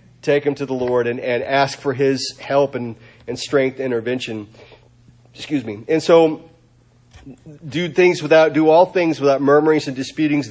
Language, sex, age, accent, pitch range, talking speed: English, male, 40-59, American, 135-185 Hz, 165 wpm